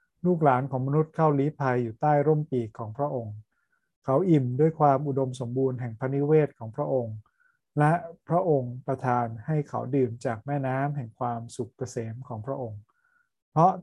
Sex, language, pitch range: male, Thai, 120-145 Hz